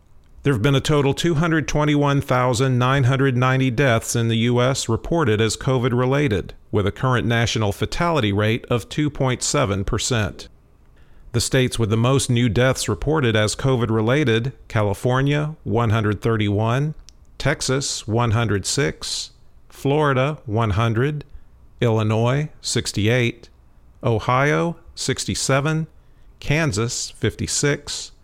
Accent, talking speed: American, 90 wpm